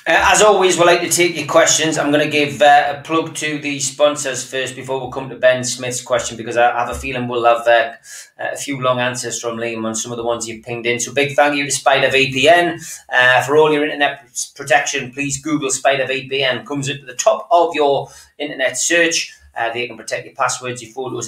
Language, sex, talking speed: English, male, 230 wpm